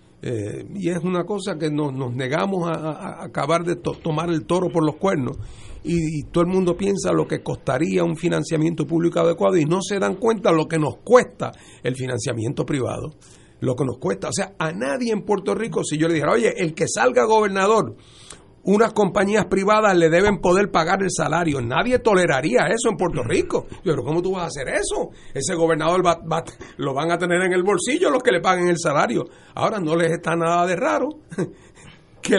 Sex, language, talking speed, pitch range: male, Spanish, 205 wpm, 135-185 Hz